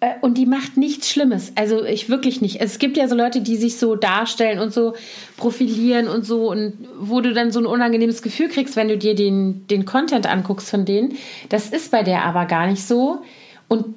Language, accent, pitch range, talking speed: German, German, 205-245 Hz, 215 wpm